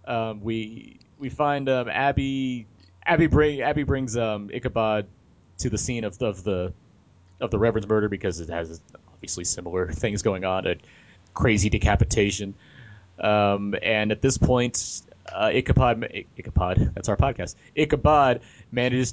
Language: English